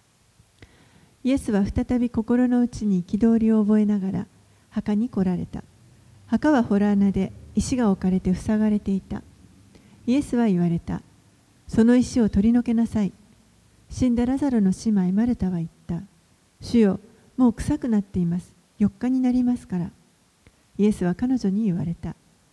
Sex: female